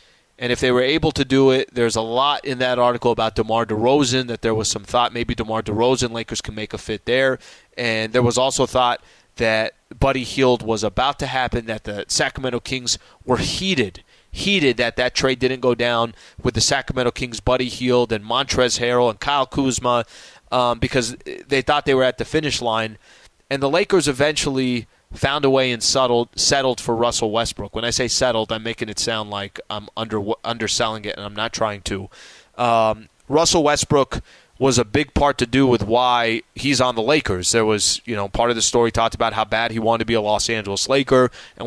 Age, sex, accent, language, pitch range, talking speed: 20-39, male, American, English, 115-130 Hz, 210 wpm